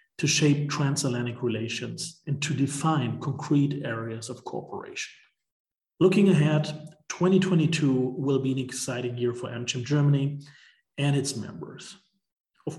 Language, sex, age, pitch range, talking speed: English, male, 40-59, 125-150 Hz, 120 wpm